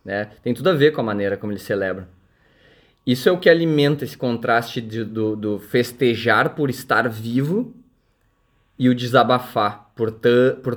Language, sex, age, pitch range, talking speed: Portuguese, male, 20-39, 105-125 Hz, 175 wpm